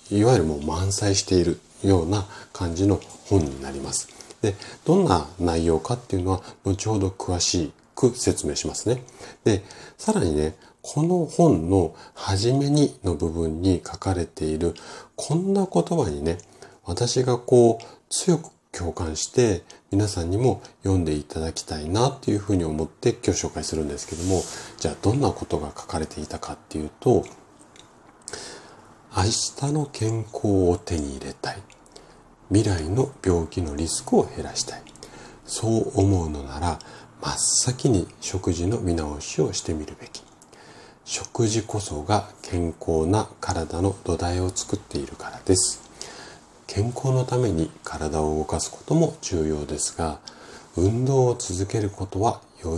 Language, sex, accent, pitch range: Japanese, male, native, 80-110 Hz